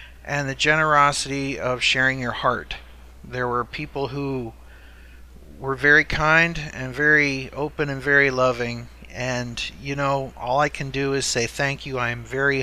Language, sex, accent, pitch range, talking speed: English, male, American, 110-140 Hz, 160 wpm